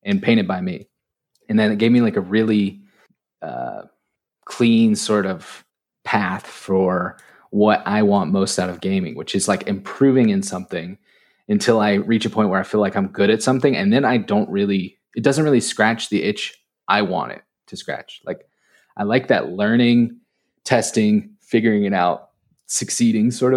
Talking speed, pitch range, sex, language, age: 180 wpm, 100-155 Hz, male, English, 20-39